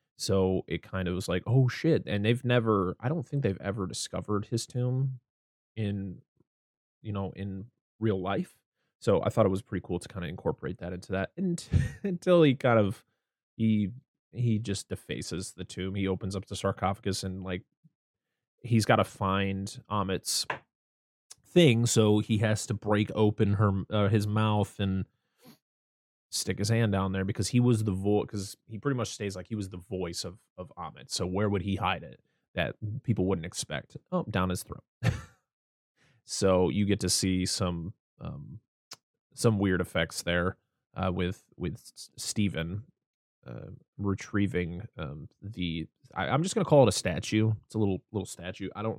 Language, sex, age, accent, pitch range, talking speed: English, male, 20-39, American, 95-115 Hz, 180 wpm